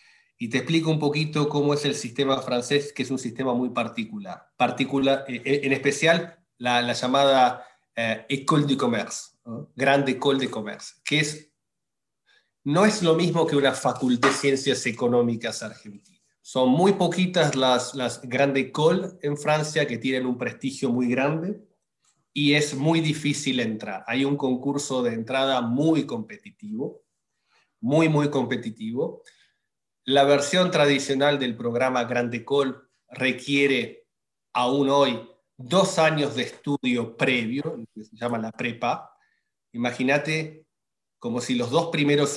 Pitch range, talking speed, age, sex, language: 125-155 Hz, 140 wpm, 30-49, male, Spanish